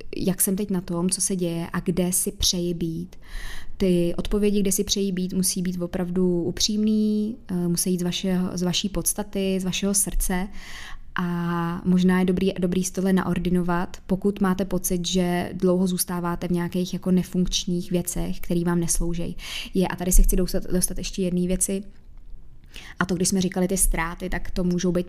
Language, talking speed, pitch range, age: Czech, 180 wpm, 170-185 Hz, 20-39